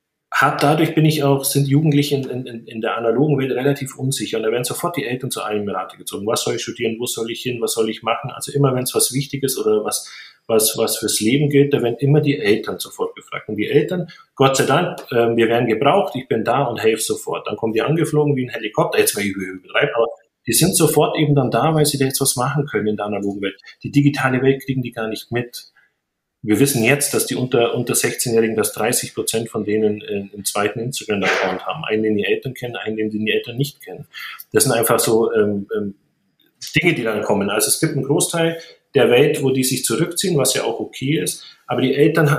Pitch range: 115-145 Hz